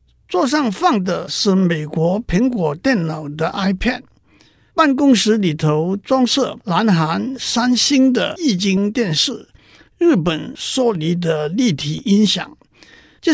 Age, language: 50-69, Chinese